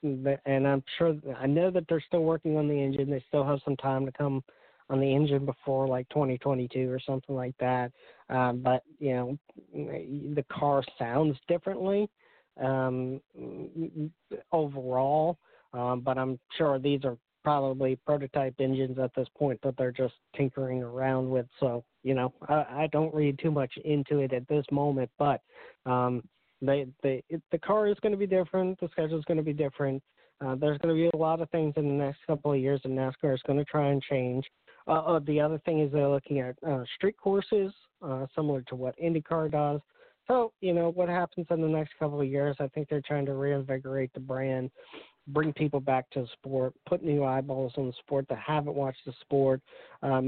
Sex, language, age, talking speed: male, English, 40-59, 200 wpm